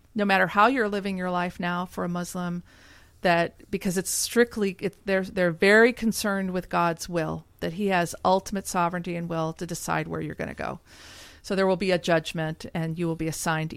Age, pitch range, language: 40-59, 160-200 Hz, English